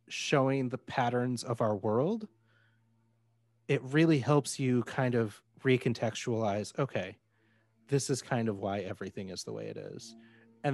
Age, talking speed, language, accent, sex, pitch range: 30-49, 145 wpm, English, American, male, 110-140 Hz